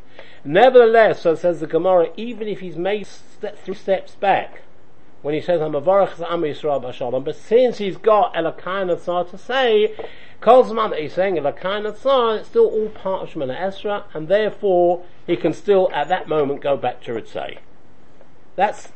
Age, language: 50-69, English